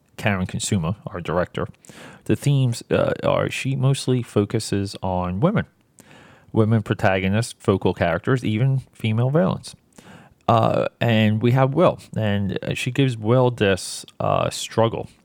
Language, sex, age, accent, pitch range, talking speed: English, male, 30-49, American, 90-120 Hz, 125 wpm